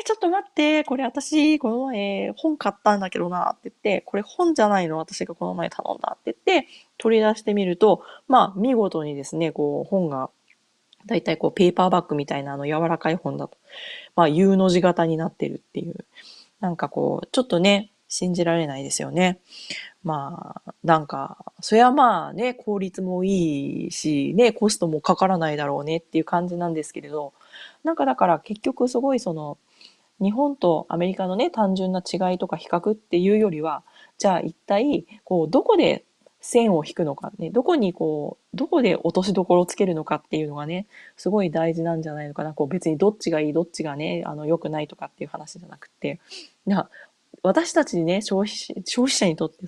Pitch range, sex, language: 160-215 Hz, female, Japanese